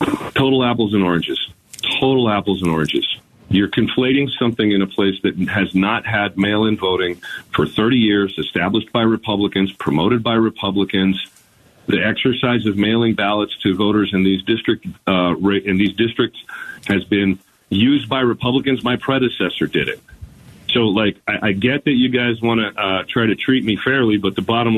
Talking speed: 170 wpm